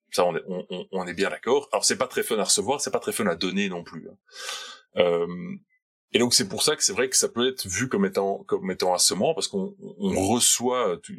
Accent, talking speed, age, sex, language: French, 250 wpm, 20-39, female, French